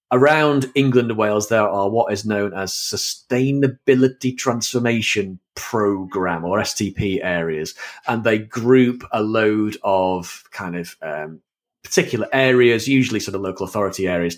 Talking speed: 140 wpm